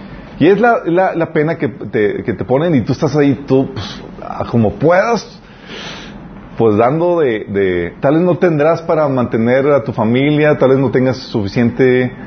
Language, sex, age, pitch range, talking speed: Spanish, male, 40-59, 105-150 Hz, 180 wpm